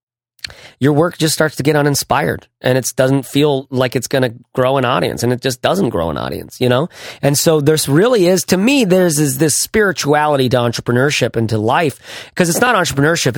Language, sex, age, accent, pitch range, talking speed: English, male, 30-49, American, 130-180 Hz, 210 wpm